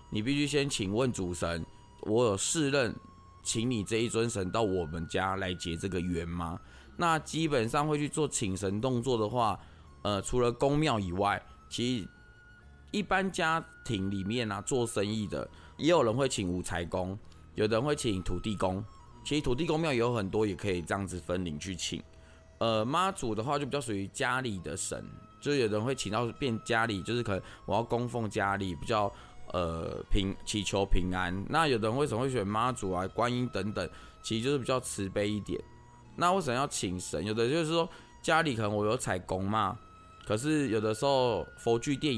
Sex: male